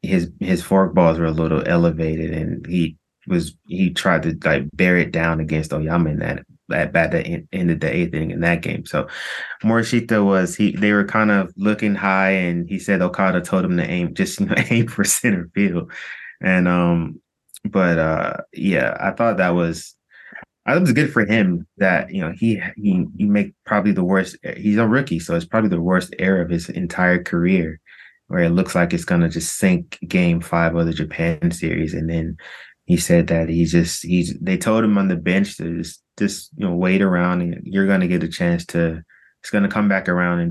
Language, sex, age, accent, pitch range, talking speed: English, male, 20-39, American, 85-105 Hz, 215 wpm